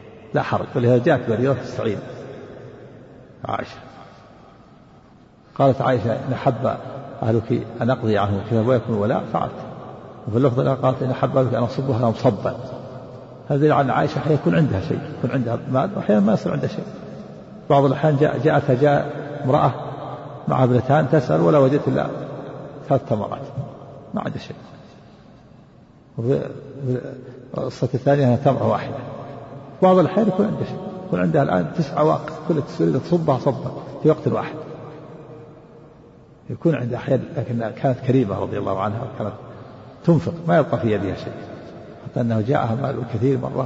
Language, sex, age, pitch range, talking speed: Arabic, male, 50-69, 125-145 Hz, 140 wpm